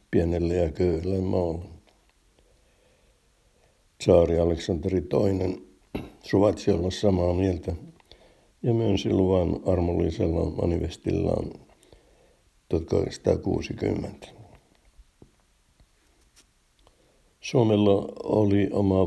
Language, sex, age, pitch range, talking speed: Finnish, male, 60-79, 85-100 Hz, 65 wpm